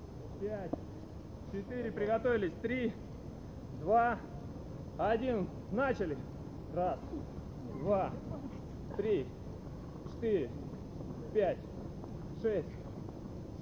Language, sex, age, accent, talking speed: Russian, male, 20-39, native, 55 wpm